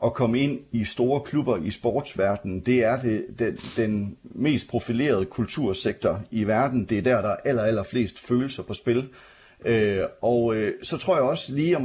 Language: Danish